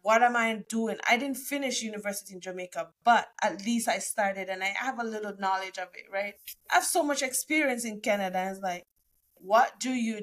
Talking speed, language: 210 wpm, English